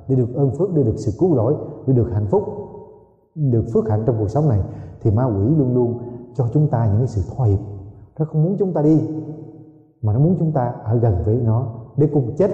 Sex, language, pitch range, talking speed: male, Vietnamese, 120-160 Hz, 245 wpm